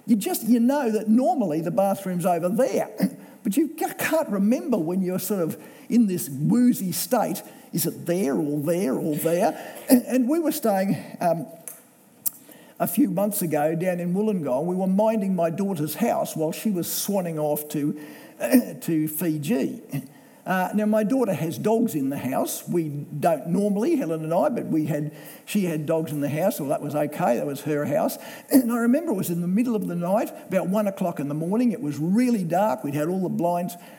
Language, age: English, 50-69